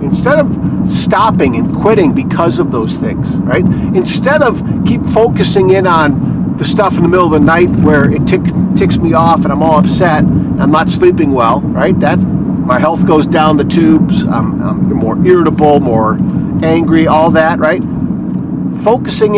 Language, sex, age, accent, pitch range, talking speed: English, male, 50-69, American, 155-185 Hz, 175 wpm